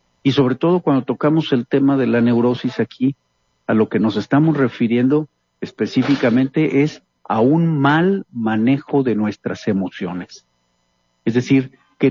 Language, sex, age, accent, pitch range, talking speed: Spanish, male, 50-69, Mexican, 110-150 Hz, 145 wpm